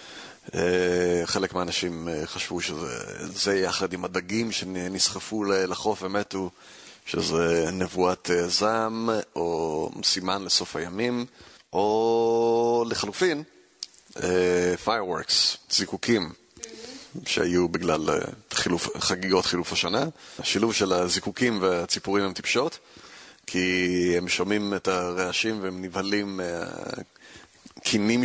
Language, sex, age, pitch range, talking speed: Hebrew, male, 30-49, 90-115 Hz, 100 wpm